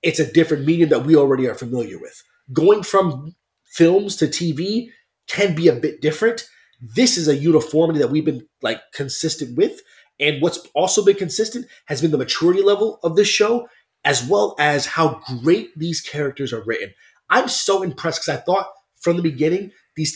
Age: 30-49